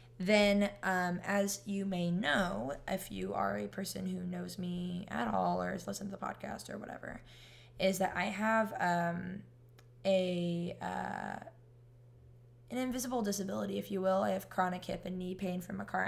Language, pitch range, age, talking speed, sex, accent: English, 125-200 Hz, 10-29, 175 wpm, female, American